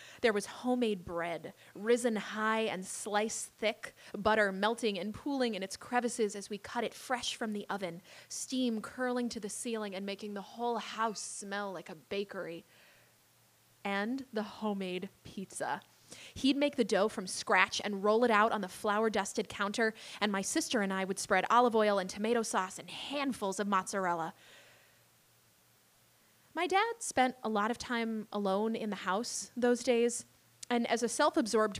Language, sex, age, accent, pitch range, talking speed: English, female, 20-39, American, 200-245 Hz, 170 wpm